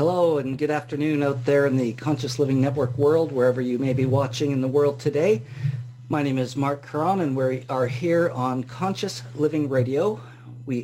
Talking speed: 195 wpm